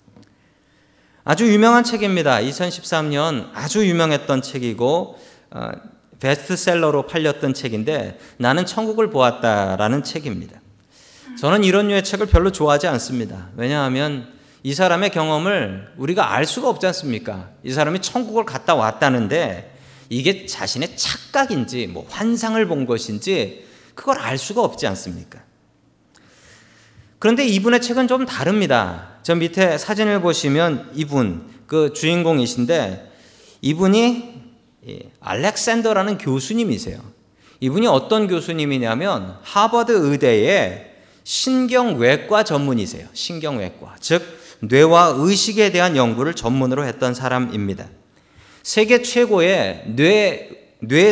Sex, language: male, Korean